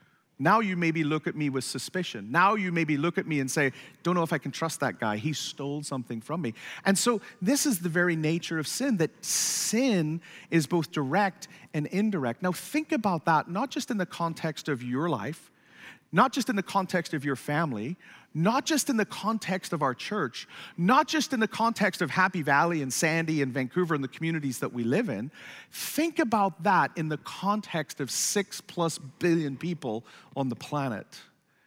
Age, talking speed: 40-59, 200 wpm